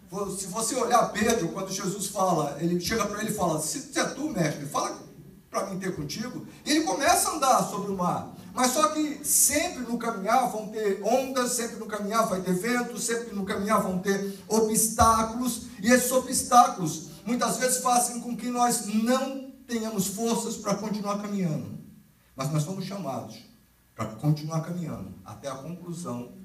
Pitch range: 190-265 Hz